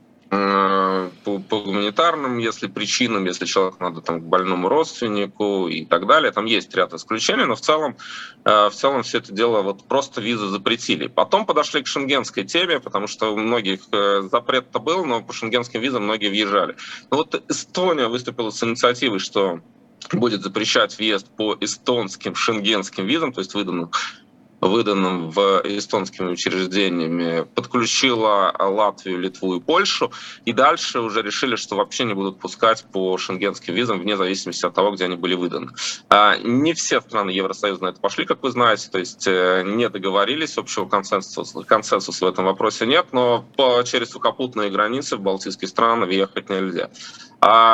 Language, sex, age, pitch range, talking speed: Russian, male, 20-39, 95-115 Hz, 155 wpm